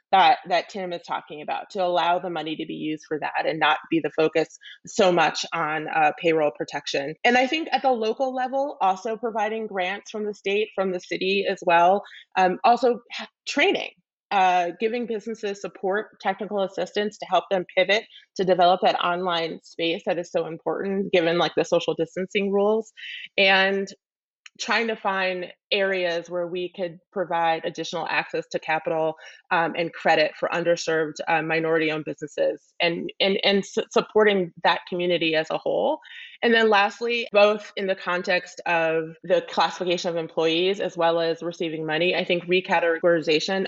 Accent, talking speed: American, 170 wpm